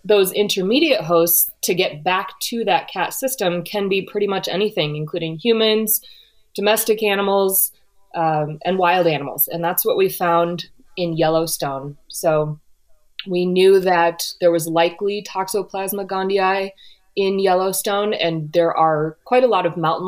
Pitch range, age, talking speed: 165-195 Hz, 20-39, 145 wpm